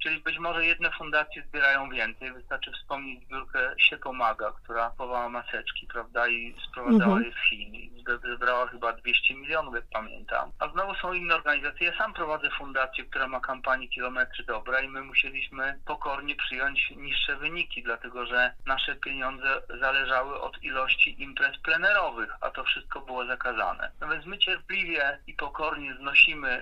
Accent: native